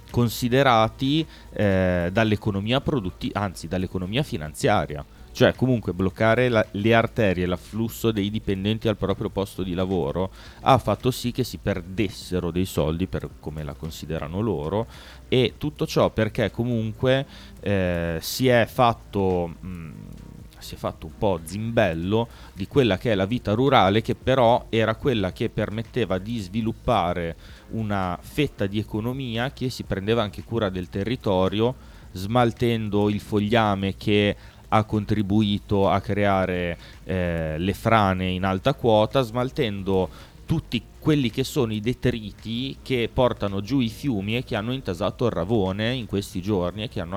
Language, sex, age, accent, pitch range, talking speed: Italian, male, 30-49, native, 95-120 Hz, 145 wpm